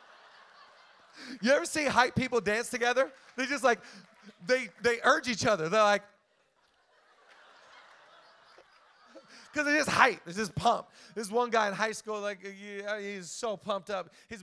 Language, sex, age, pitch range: Swedish, male, 30-49, 170-215 Hz